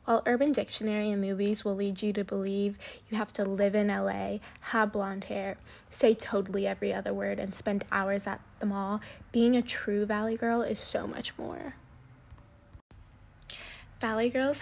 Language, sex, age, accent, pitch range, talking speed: English, female, 10-29, American, 200-240 Hz, 170 wpm